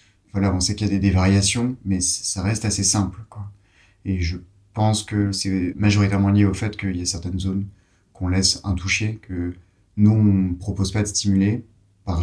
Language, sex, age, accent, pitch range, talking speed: French, male, 30-49, French, 90-105 Hz, 200 wpm